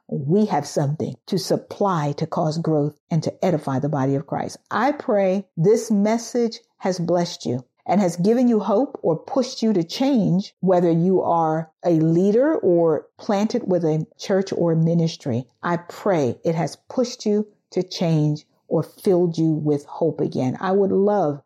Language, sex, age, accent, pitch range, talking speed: English, female, 50-69, American, 165-210 Hz, 170 wpm